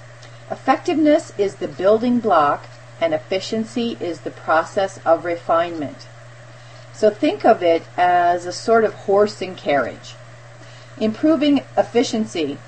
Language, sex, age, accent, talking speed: English, female, 40-59, American, 120 wpm